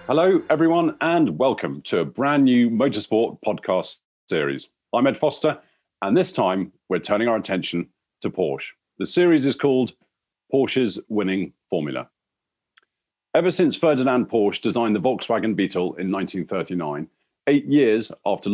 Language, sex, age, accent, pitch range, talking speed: English, male, 40-59, British, 95-145 Hz, 140 wpm